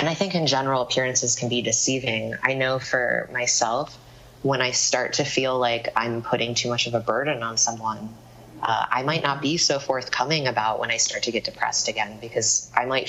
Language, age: English, 20-39